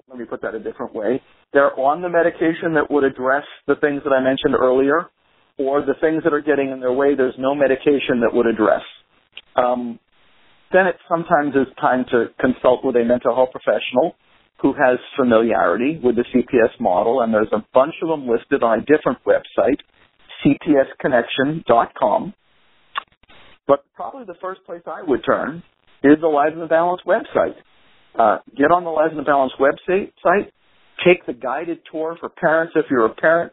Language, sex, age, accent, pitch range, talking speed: English, male, 50-69, American, 130-160 Hz, 185 wpm